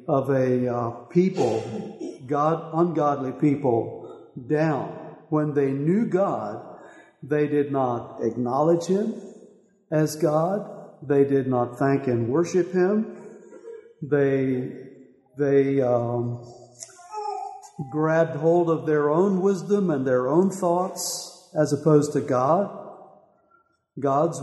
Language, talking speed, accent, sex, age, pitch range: English, 110 wpm, American, male, 60-79, 130-175 Hz